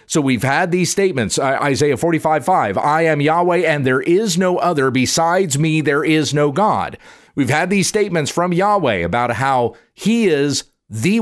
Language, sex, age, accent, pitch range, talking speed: English, male, 50-69, American, 130-175 Hz, 175 wpm